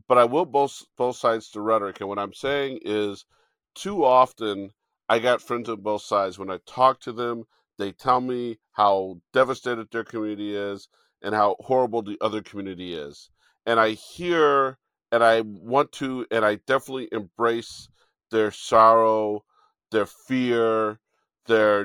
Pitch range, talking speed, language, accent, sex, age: 105-135 Hz, 155 wpm, English, American, male, 50-69